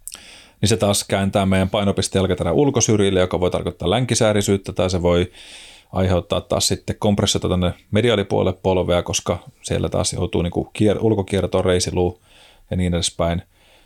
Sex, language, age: male, Finnish, 30-49